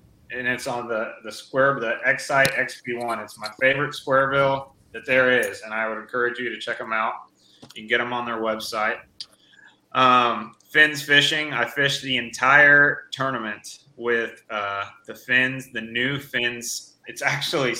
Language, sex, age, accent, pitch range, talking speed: English, male, 20-39, American, 110-125 Hz, 165 wpm